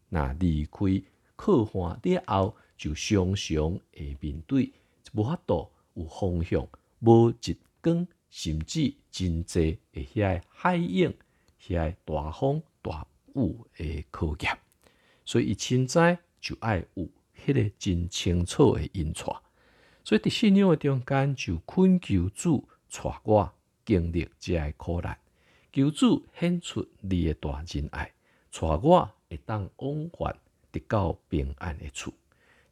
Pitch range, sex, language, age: 80-115 Hz, male, Chinese, 50-69